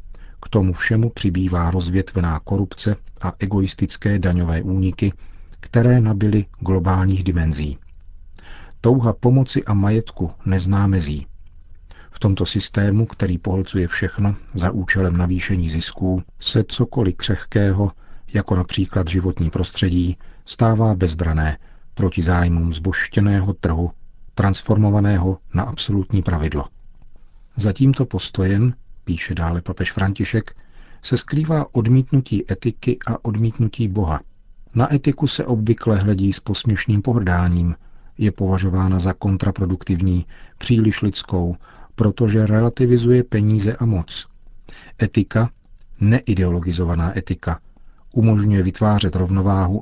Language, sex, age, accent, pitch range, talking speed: Czech, male, 50-69, native, 90-105 Hz, 105 wpm